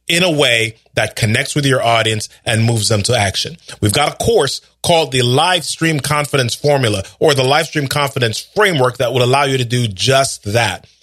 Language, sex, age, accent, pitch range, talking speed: English, male, 30-49, American, 115-150 Hz, 200 wpm